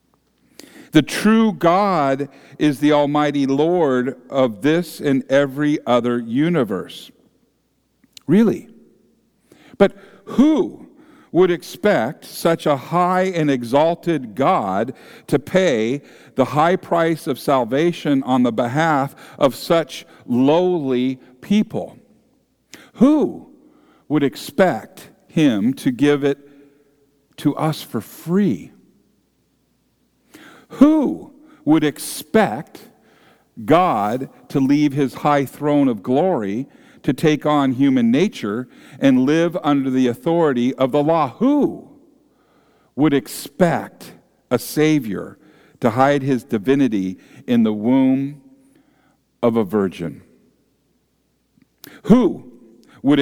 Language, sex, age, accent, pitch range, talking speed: English, male, 50-69, American, 135-185 Hz, 100 wpm